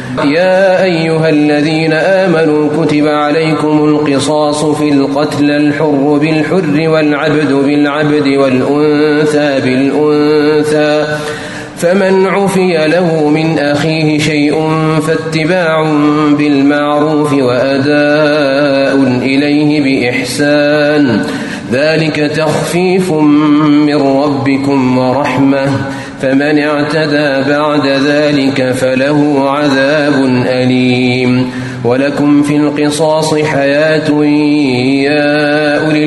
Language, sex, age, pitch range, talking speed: Arabic, male, 30-49, 145-155 Hz, 75 wpm